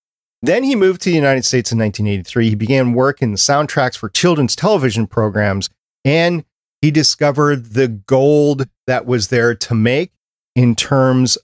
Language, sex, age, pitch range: English, male, 30-49, 110-135 Hz